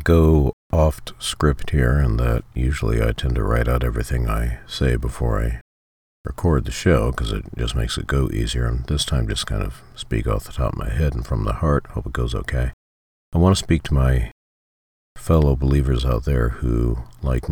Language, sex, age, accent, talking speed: English, male, 50-69, American, 205 wpm